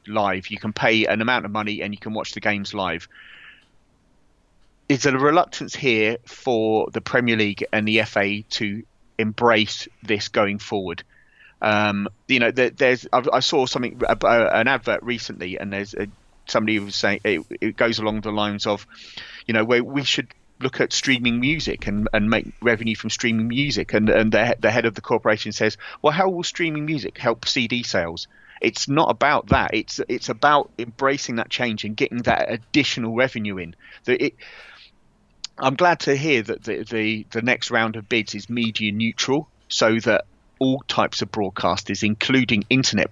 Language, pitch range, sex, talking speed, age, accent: English, 105-120 Hz, male, 185 wpm, 30-49, British